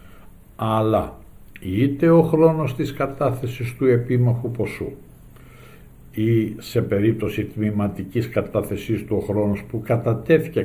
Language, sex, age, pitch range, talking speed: Greek, male, 60-79, 95-125 Hz, 100 wpm